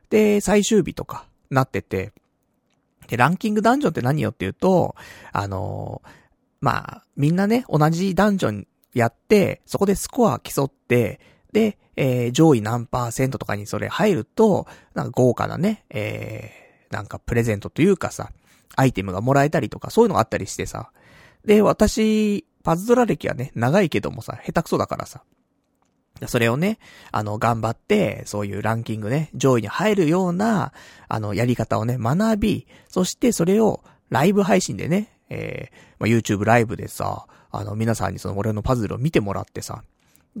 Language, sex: Japanese, male